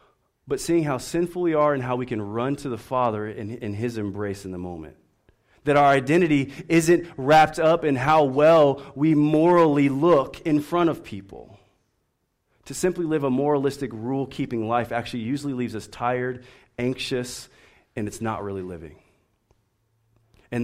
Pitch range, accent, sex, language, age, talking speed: 105-145 Hz, American, male, English, 30-49, 165 wpm